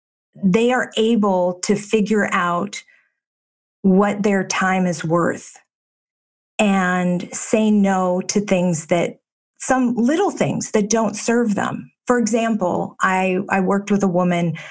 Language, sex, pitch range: English, female, 180-220 Hz